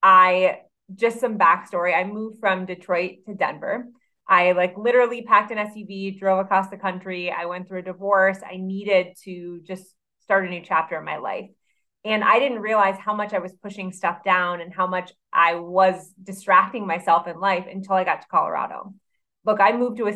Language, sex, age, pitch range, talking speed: English, female, 20-39, 180-215 Hz, 195 wpm